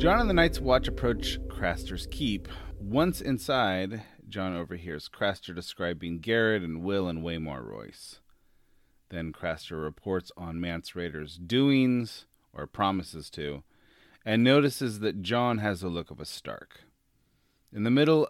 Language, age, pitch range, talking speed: English, 30-49, 85-120 Hz, 140 wpm